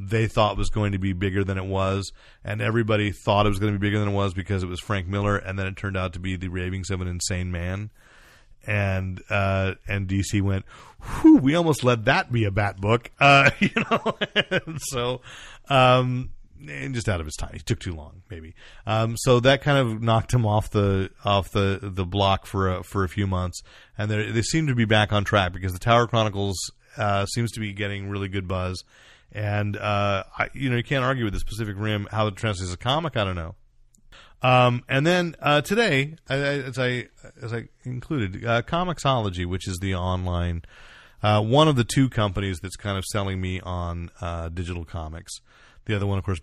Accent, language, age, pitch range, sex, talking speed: American, English, 30-49, 95-115 Hz, male, 220 wpm